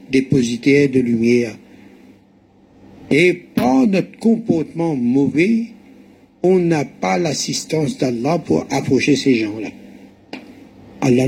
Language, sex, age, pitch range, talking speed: French, male, 60-79, 130-190 Hz, 95 wpm